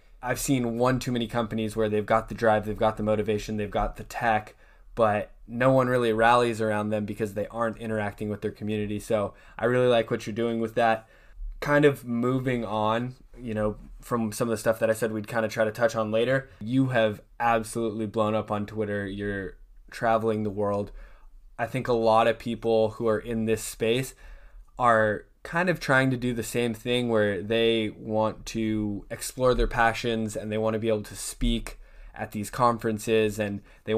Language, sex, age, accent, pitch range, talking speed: English, male, 10-29, American, 105-120 Hz, 205 wpm